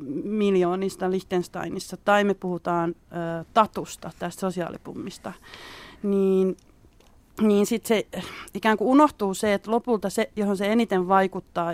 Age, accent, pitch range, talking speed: 30-49, native, 180-210 Hz, 125 wpm